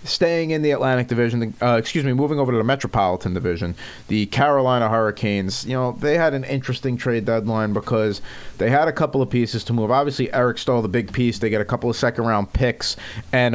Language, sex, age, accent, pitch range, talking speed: English, male, 30-49, American, 110-135 Hz, 215 wpm